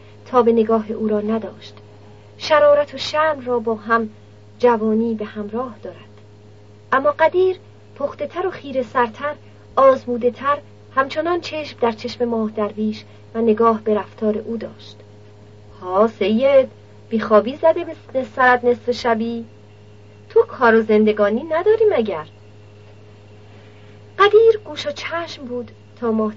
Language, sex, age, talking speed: Persian, female, 40-59, 135 wpm